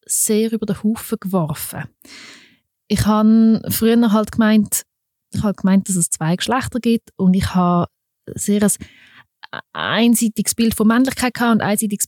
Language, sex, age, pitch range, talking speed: German, female, 20-39, 180-230 Hz, 150 wpm